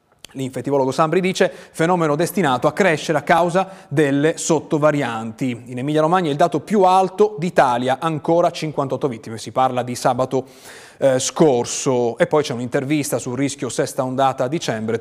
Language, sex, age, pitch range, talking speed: Italian, male, 30-49, 140-185 Hz, 155 wpm